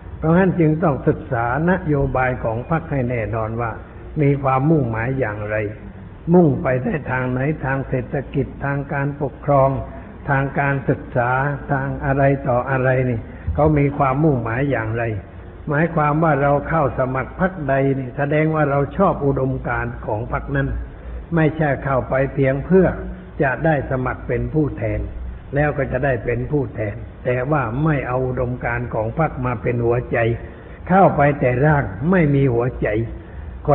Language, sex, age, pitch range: Thai, male, 60-79, 120-145 Hz